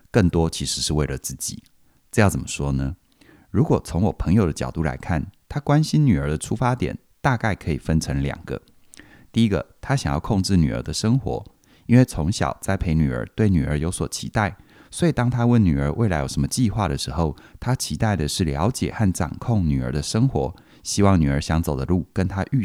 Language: Chinese